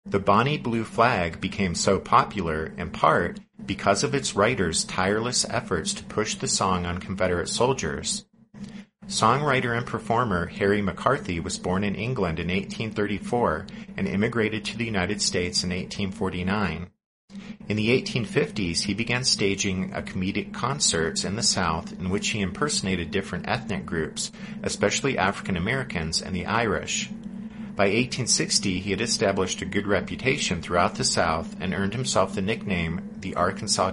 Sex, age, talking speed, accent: male, 40-59, 145 wpm, American